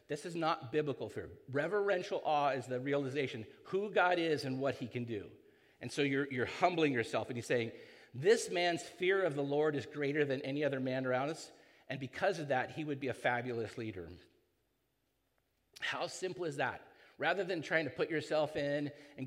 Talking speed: 195 wpm